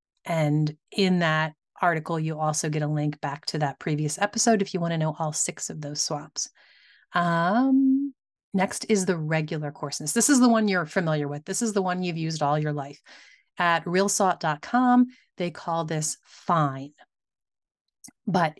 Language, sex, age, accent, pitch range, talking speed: English, female, 30-49, American, 160-225 Hz, 170 wpm